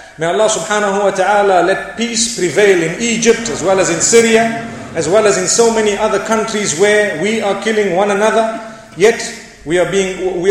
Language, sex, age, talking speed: English, male, 40-59, 195 wpm